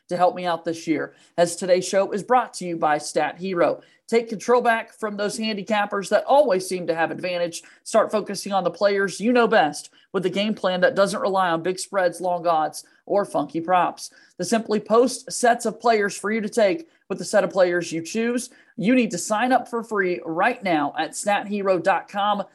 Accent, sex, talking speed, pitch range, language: American, male, 210 wpm, 175-225 Hz, English